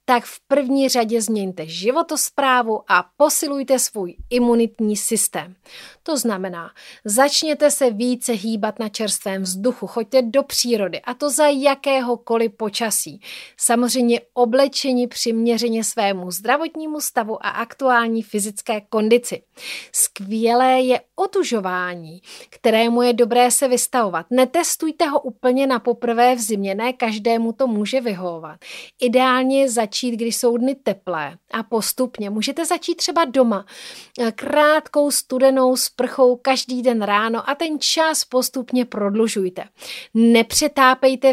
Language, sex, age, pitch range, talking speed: Czech, female, 30-49, 220-265 Hz, 120 wpm